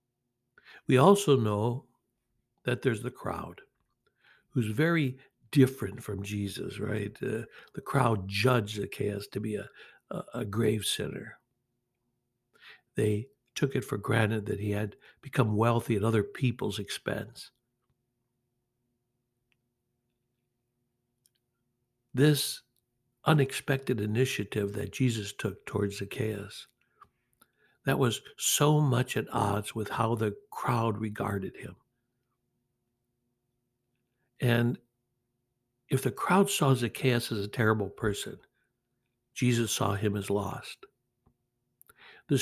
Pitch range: 110-125 Hz